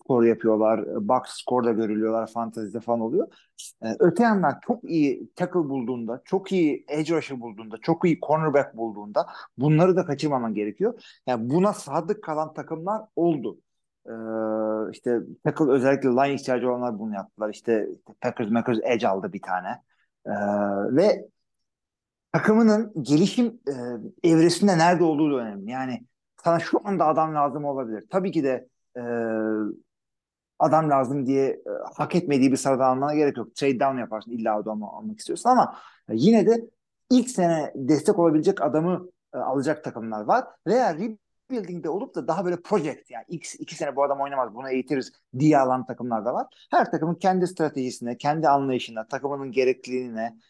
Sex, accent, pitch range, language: male, native, 120-175 Hz, Turkish